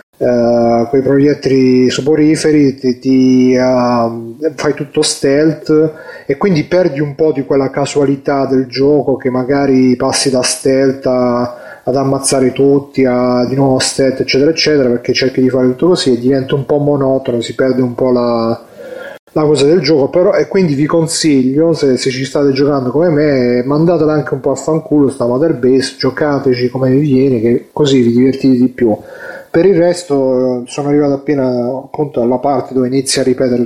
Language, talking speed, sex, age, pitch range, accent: Italian, 175 wpm, male, 30-49, 125-145 Hz, native